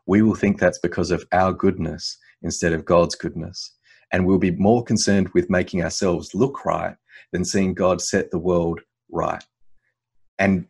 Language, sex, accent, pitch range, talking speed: English, male, Australian, 85-105 Hz, 170 wpm